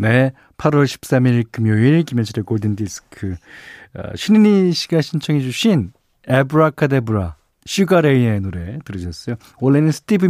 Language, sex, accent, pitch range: Korean, male, native, 105-160 Hz